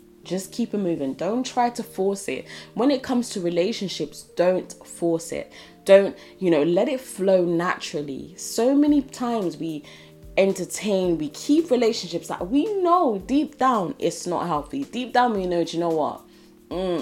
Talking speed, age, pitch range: 175 wpm, 10-29, 160-220 Hz